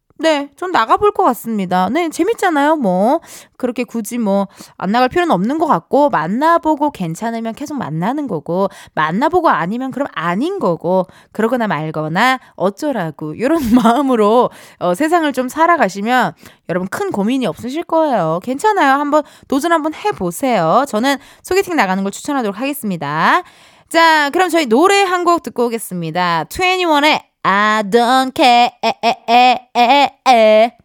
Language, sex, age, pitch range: Korean, female, 20-39, 195-300 Hz